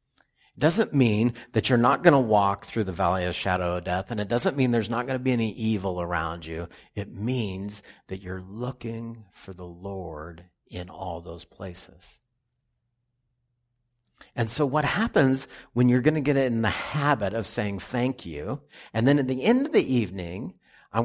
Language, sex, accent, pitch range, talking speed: English, male, American, 100-125 Hz, 190 wpm